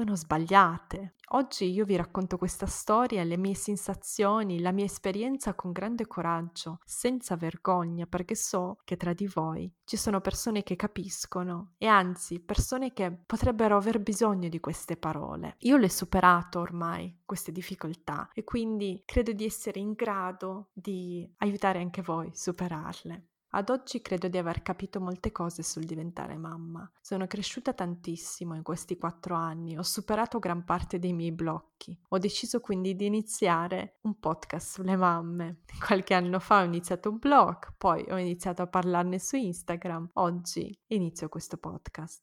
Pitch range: 175-210 Hz